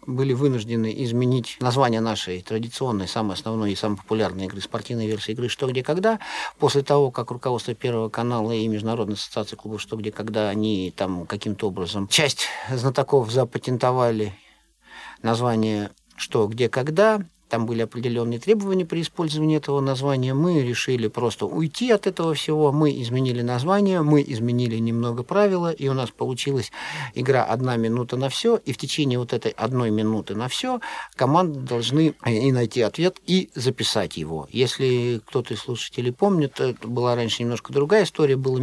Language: Russian